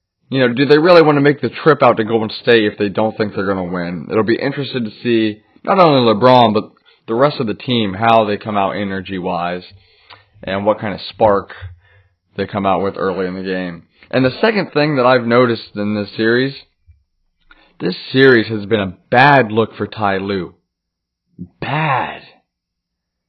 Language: English